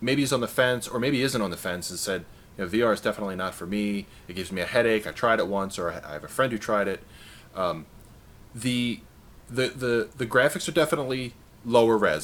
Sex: male